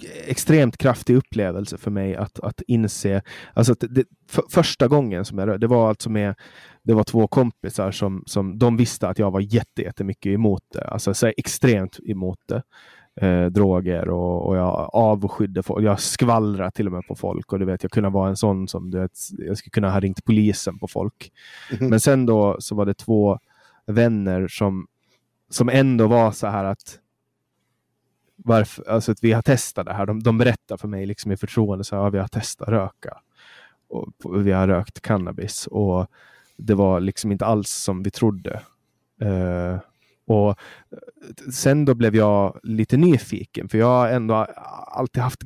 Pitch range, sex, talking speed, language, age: 100-115 Hz, male, 185 wpm, Swedish, 20-39